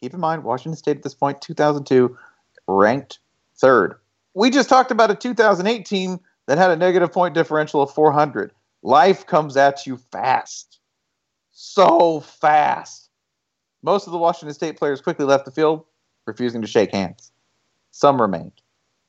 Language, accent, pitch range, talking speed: English, American, 130-170 Hz, 155 wpm